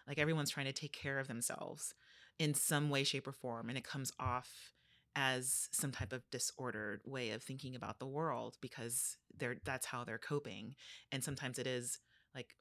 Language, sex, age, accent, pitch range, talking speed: English, female, 30-49, American, 125-150 Hz, 185 wpm